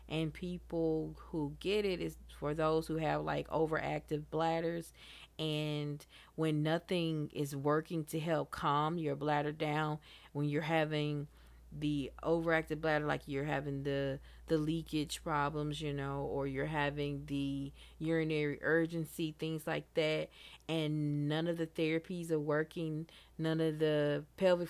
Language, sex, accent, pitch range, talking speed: English, female, American, 145-160 Hz, 145 wpm